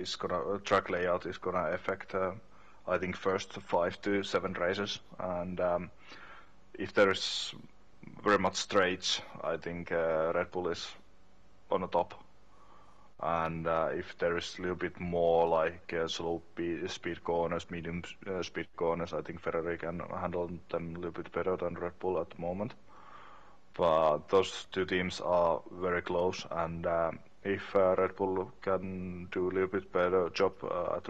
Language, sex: English, male